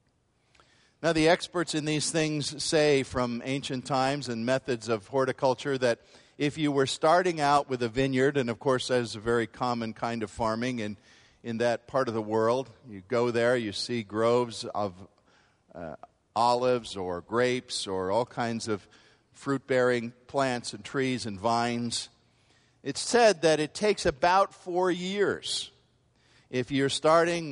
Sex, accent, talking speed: male, American, 160 wpm